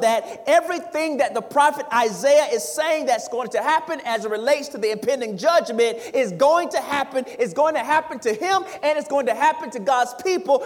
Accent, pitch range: American, 230-310 Hz